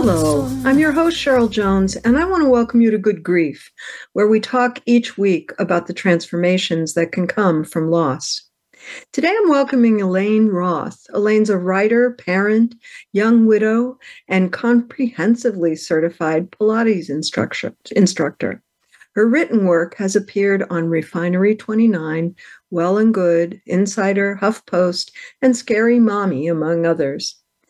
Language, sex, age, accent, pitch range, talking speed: English, female, 60-79, American, 180-235 Hz, 130 wpm